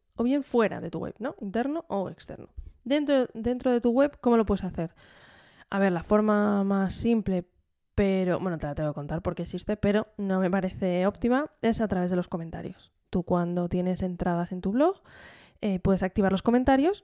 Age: 20-39